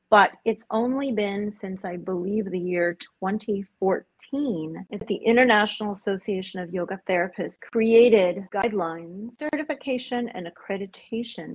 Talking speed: 115 wpm